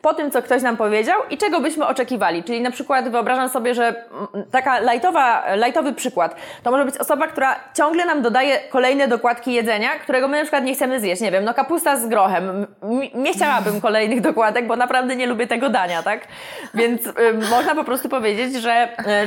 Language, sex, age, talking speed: Polish, female, 20-39, 195 wpm